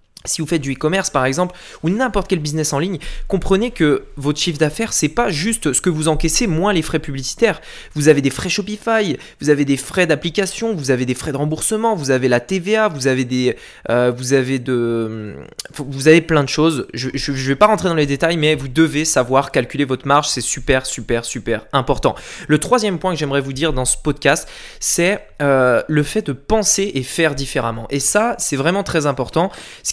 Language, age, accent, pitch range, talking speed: French, 20-39, French, 135-185 Hz, 215 wpm